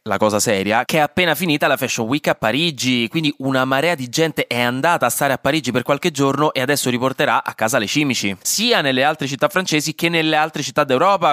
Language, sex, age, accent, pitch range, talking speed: Italian, male, 20-39, native, 115-150 Hz, 230 wpm